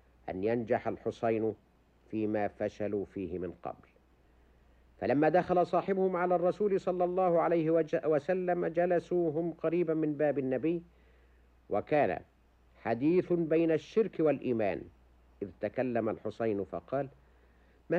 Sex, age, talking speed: male, 50-69, 105 wpm